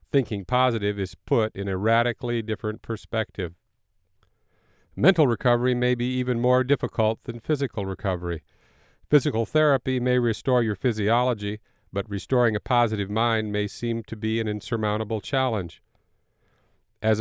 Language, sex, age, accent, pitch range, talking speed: English, male, 50-69, American, 105-130 Hz, 135 wpm